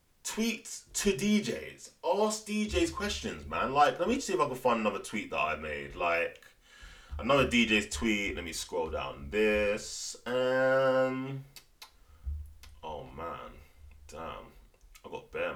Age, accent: 20-39, British